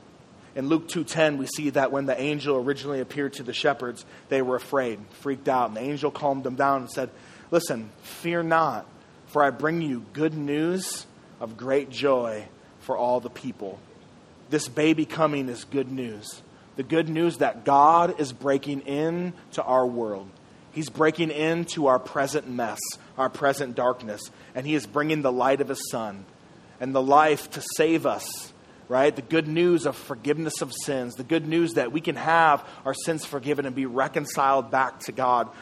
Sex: male